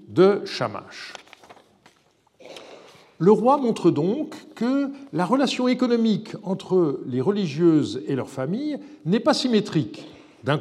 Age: 50-69